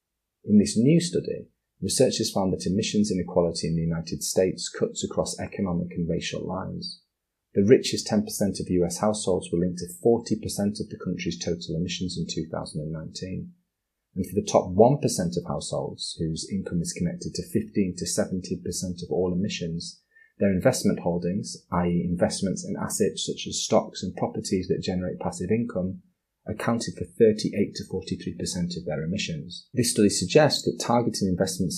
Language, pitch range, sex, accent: English, 90-115 Hz, male, British